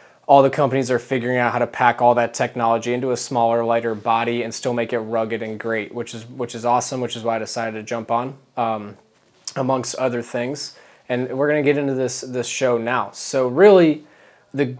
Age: 20-39